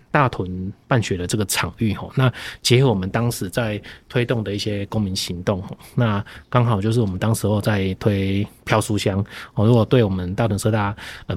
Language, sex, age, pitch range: Chinese, male, 20-39, 95-115 Hz